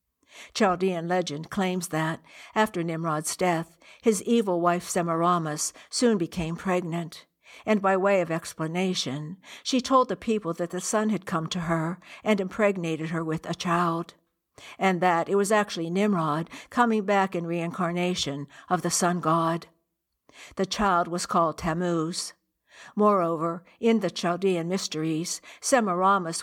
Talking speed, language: 140 wpm, English